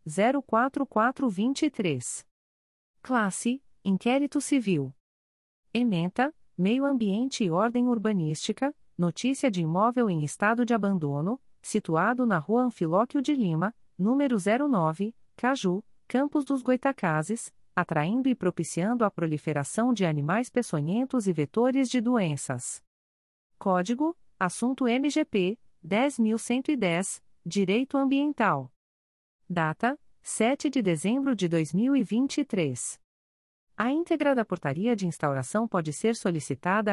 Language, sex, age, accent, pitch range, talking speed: Portuguese, female, 40-59, Brazilian, 165-250 Hz, 100 wpm